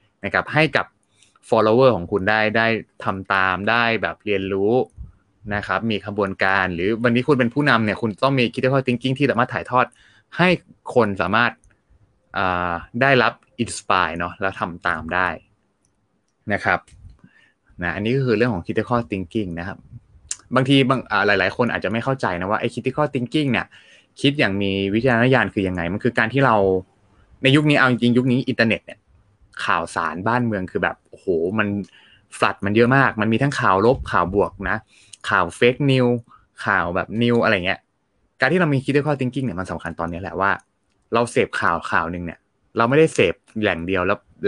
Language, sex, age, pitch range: Thai, male, 20-39, 95-125 Hz